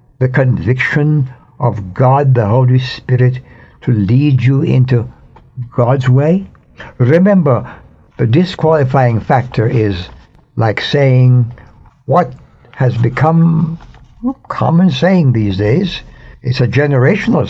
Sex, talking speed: male, 105 wpm